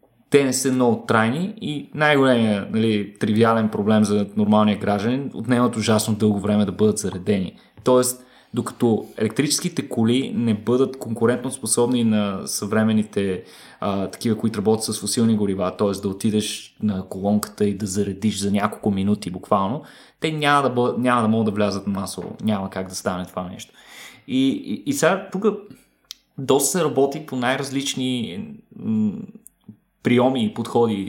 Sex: male